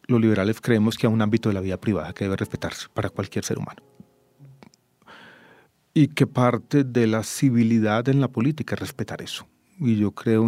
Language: English